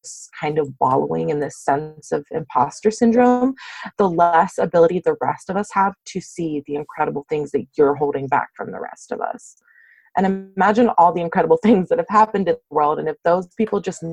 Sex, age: female, 30-49